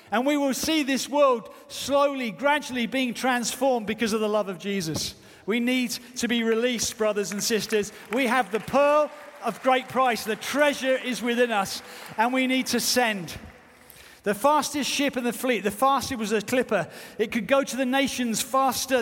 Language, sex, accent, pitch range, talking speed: English, male, British, 215-265 Hz, 185 wpm